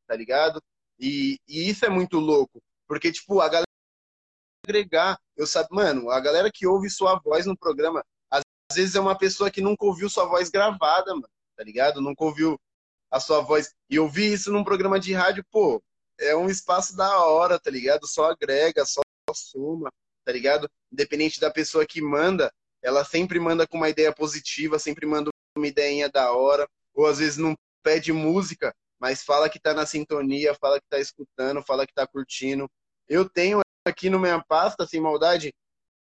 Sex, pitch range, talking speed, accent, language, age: male, 150-185 Hz, 185 wpm, Brazilian, Portuguese, 20-39